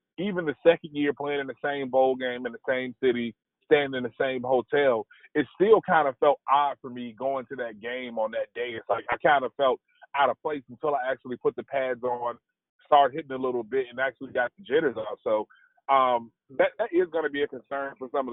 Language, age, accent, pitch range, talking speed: English, 30-49, American, 130-200 Hz, 240 wpm